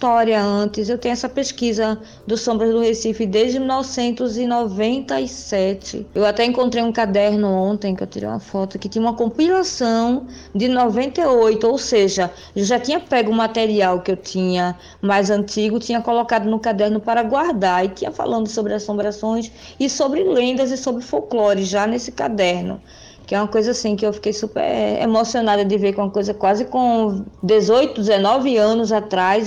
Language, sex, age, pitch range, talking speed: Portuguese, female, 20-39, 200-245 Hz, 165 wpm